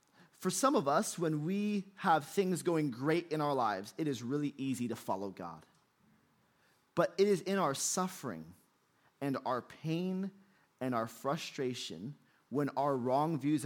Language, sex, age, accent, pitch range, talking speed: English, male, 30-49, American, 135-190 Hz, 160 wpm